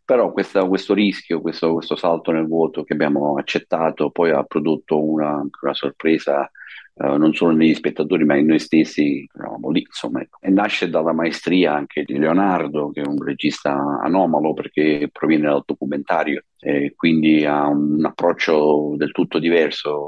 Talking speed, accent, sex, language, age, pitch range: 150 wpm, native, male, Italian, 50-69, 70-80 Hz